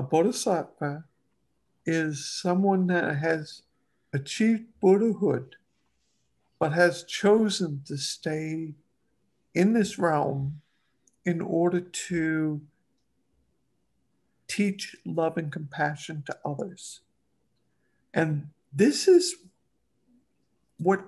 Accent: American